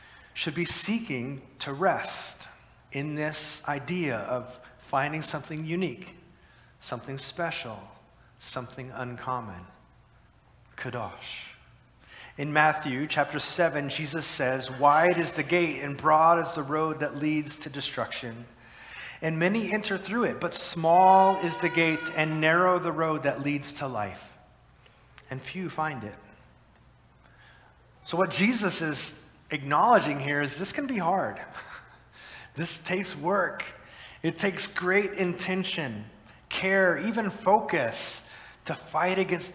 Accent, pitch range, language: American, 135-170 Hz, English